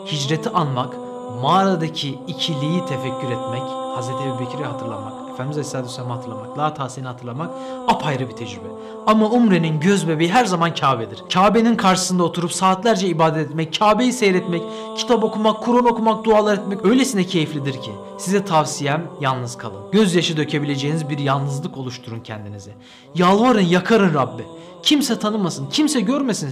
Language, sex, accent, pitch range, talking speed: Turkish, male, native, 130-190 Hz, 130 wpm